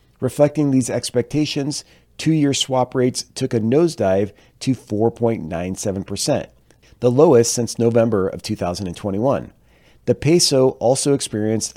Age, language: 40-59, English